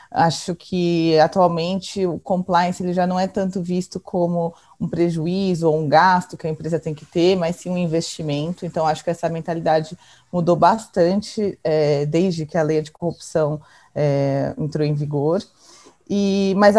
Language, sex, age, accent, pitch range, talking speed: Portuguese, female, 20-39, Brazilian, 160-190 Hz, 155 wpm